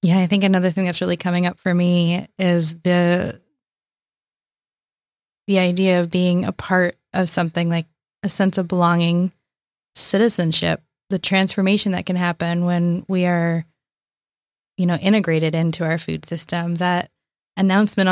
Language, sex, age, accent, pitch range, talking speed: English, female, 20-39, American, 175-190 Hz, 145 wpm